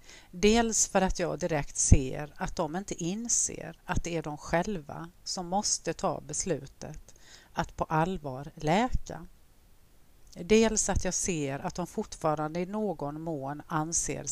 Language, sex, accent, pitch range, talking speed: Swedish, female, native, 150-190 Hz, 145 wpm